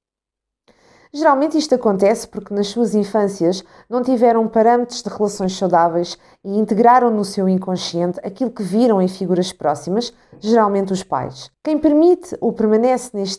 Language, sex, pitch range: Portuguese, female, 175-225 Hz